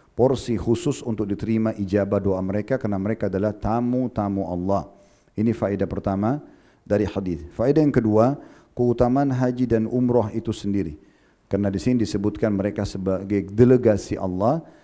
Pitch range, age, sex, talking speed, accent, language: 100-115 Hz, 40-59, male, 140 wpm, native, Indonesian